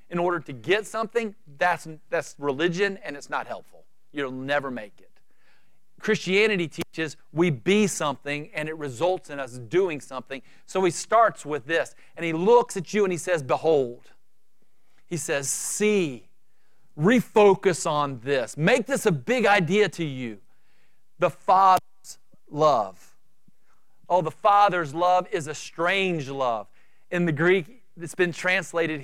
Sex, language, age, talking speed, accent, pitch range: male, English, 40-59, 150 wpm, American, 155-210 Hz